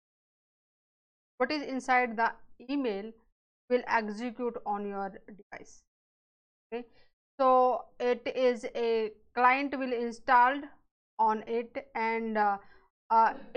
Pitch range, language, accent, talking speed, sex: 225-270 Hz, English, Indian, 100 wpm, female